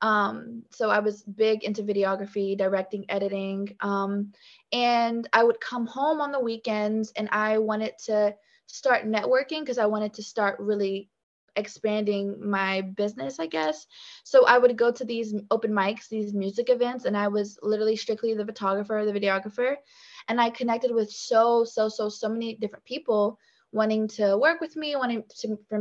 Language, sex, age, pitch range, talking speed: English, female, 20-39, 205-240 Hz, 170 wpm